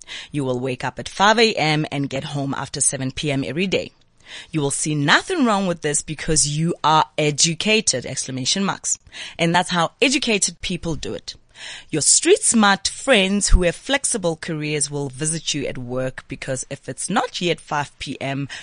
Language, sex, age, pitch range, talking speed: English, female, 30-49, 135-180 Hz, 175 wpm